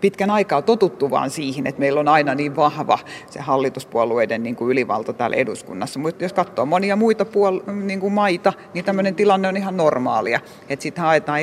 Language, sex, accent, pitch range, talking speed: Finnish, female, native, 145-195 Hz, 185 wpm